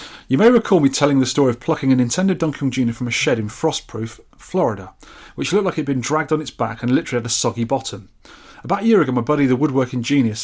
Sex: male